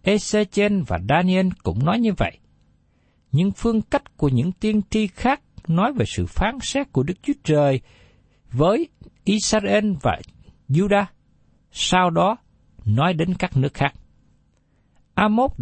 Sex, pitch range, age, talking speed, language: male, 140-220 Hz, 60-79, 140 wpm, Vietnamese